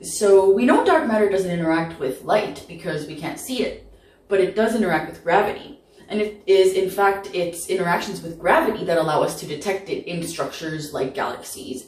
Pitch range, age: 165-215 Hz, 20-39